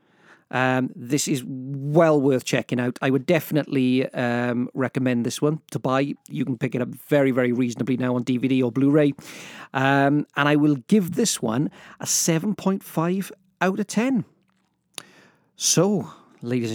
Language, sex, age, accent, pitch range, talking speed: English, male, 40-59, British, 130-165 Hz, 150 wpm